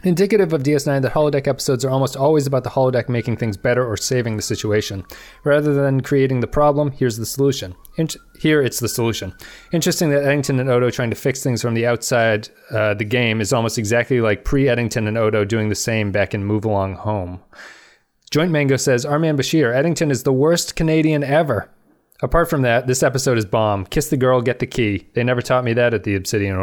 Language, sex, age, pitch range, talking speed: English, male, 30-49, 105-140 Hz, 210 wpm